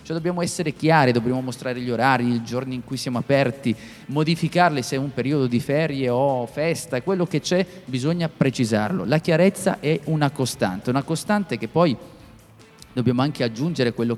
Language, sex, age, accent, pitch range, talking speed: Italian, male, 30-49, native, 120-165 Hz, 175 wpm